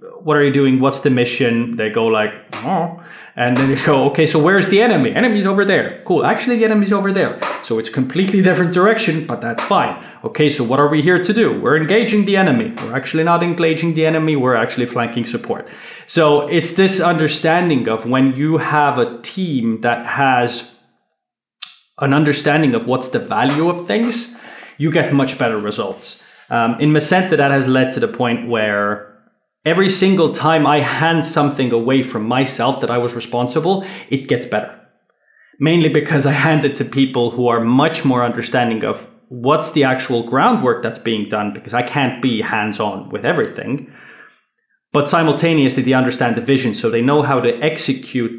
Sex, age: male, 20-39